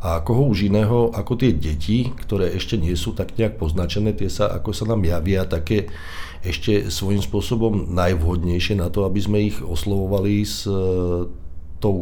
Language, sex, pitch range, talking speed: Slovak, male, 85-105 Hz, 170 wpm